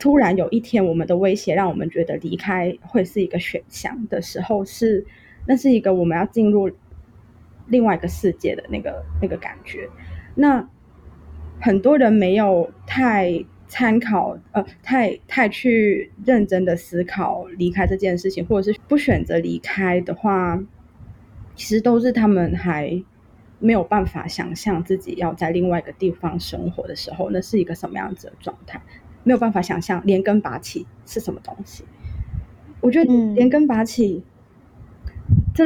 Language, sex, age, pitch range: Chinese, female, 20-39, 170-215 Hz